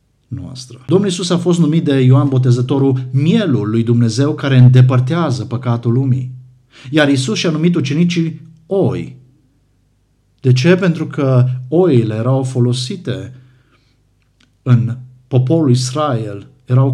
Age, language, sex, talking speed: 50-69, Romanian, male, 120 wpm